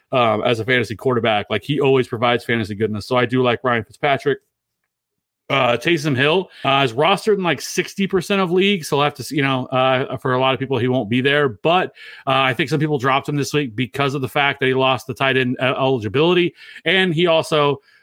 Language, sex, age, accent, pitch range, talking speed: English, male, 30-49, American, 125-150 Hz, 230 wpm